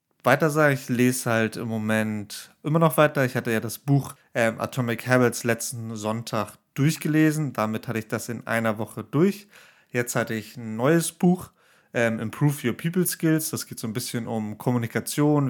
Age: 30-49